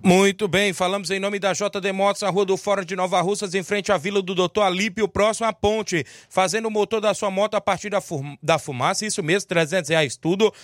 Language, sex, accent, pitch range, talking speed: Portuguese, male, Brazilian, 185-205 Hz, 225 wpm